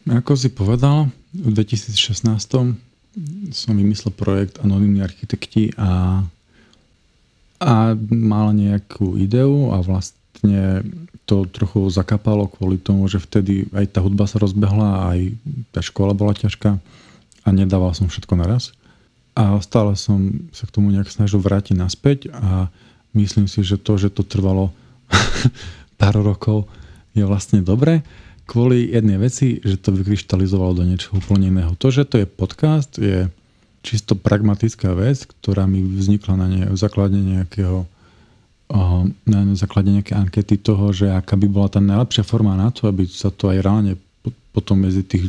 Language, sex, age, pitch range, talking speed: Slovak, male, 40-59, 95-115 Hz, 145 wpm